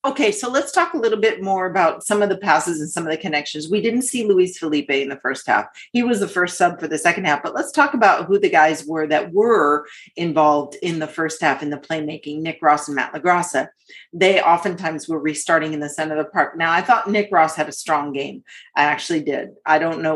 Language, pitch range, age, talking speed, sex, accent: English, 155-210 Hz, 40-59, 250 wpm, female, American